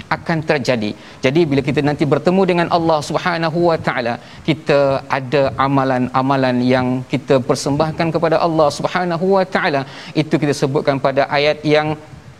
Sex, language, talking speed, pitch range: male, Malayalam, 140 wpm, 135-160 Hz